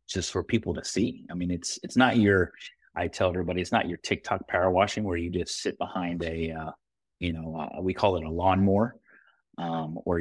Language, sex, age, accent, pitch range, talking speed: English, male, 30-49, American, 85-115 Hz, 215 wpm